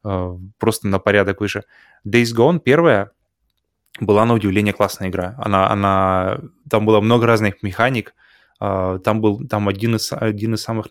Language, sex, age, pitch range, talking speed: Russian, male, 20-39, 100-115 Hz, 160 wpm